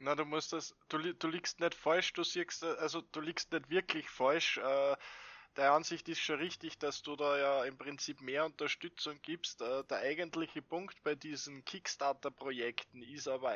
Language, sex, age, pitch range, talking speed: German, male, 20-39, 145-190 Hz, 180 wpm